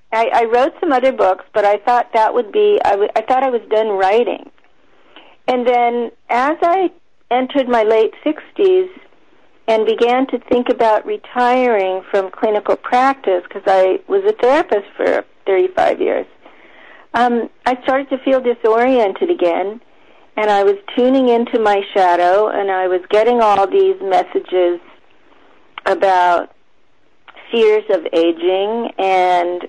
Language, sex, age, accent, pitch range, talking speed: English, female, 40-59, American, 195-265 Hz, 140 wpm